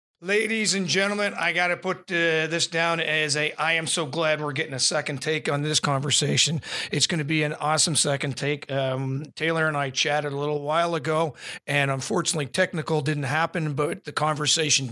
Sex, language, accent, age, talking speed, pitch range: male, English, American, 40-59, 195 wpm, 145-170 Hz